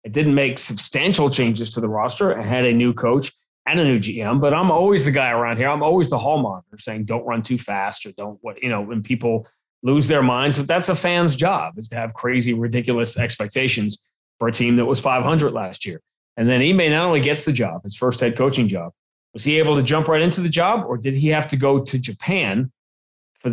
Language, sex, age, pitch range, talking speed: English, male, 30-49, 115-150 Hz, 240 wpm